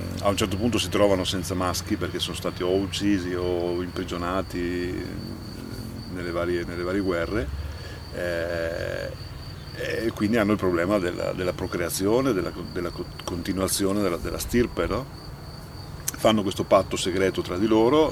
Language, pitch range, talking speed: Italian, 90-110 Hz, 135 wpm